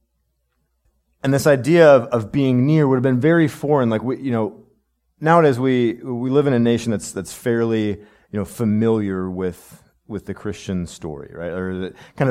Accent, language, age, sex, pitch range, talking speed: American, English, 30-49, male, 100-135 Hz, 180 wpm